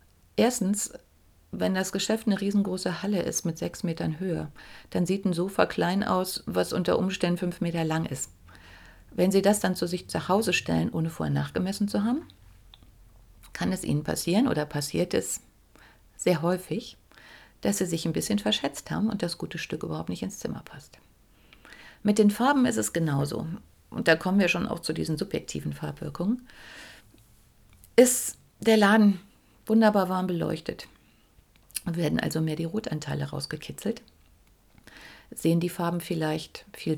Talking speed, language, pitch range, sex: 155 wpm, German, 145-190 Hz, female